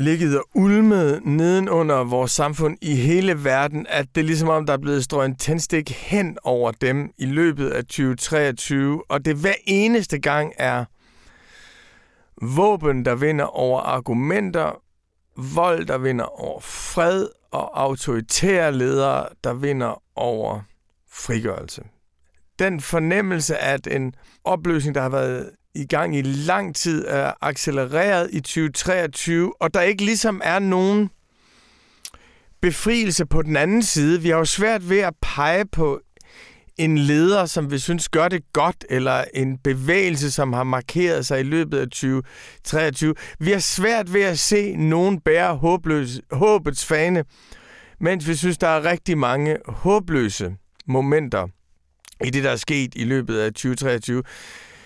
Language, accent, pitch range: Danish, native, 135-175 Hz